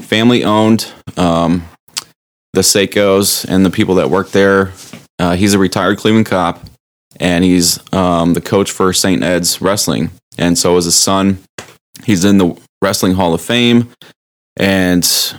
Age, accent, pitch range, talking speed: 20-39, American, 90-100 Hz, 150 wpm